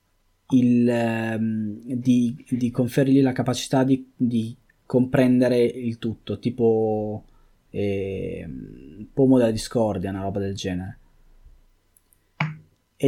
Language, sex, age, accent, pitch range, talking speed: Italian, male, 20-39, native, 110-135 Hz, 95 wpm